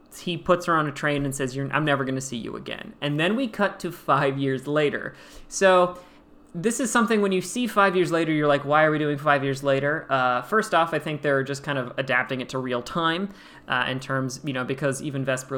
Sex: male